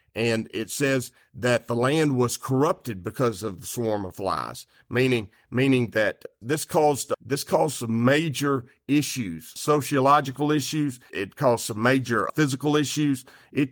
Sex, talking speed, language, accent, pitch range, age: male, 145 wpm, English, American, 120-145 Hz, 50-69